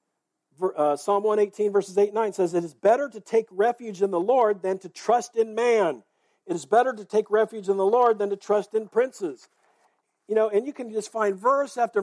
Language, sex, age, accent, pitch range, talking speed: English, male, 50-69, American, 200-275 Hz, 225 wpm